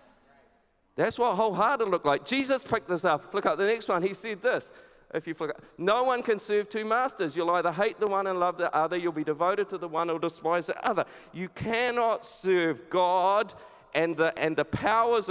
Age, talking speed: 50-69, 210 wpm